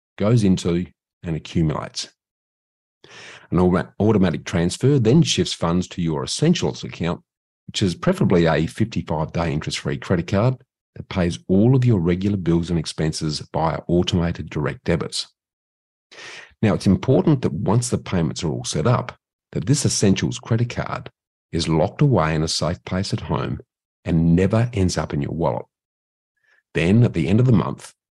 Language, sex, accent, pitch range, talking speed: English, male, Australian, 80-110 Hz, 160 wpm